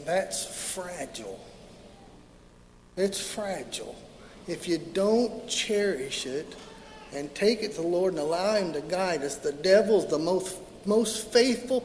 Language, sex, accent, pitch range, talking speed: English, male, American, 155-220 Hz, 135 wpm